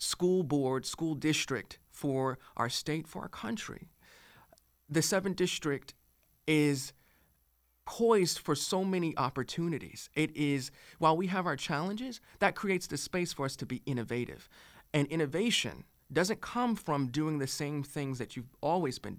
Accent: American